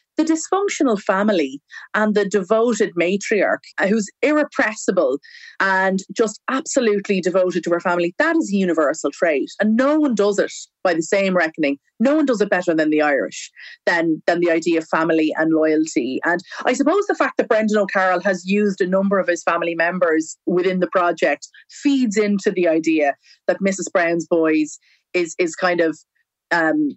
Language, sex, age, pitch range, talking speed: English, female, 30-49, 180-265 Hz, 175 wpm